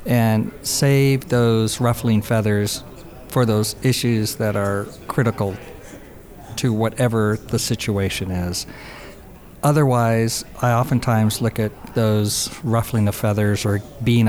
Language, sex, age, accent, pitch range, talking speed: English, male, 50-69, American, 105-120 Hz, 115 wpm